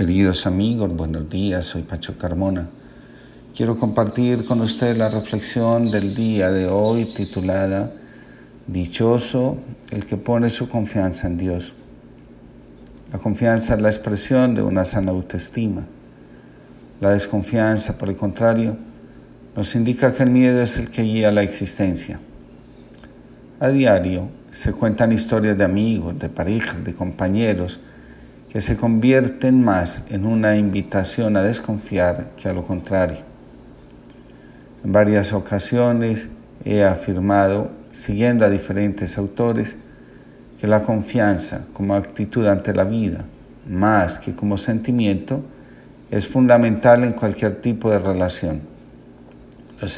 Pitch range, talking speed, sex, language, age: 90-115 Hz, 125 wpm, male, Spanish, 50-69